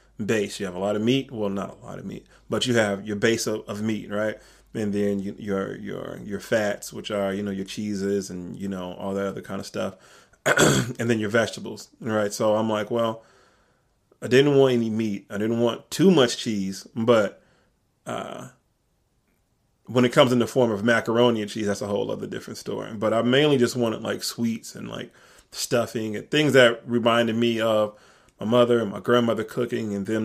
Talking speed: 210 wpm